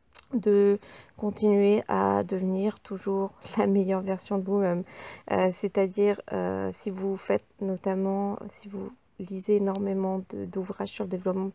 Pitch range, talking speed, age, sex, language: 175-205 Hz, 135 wpm, 40-59, female, French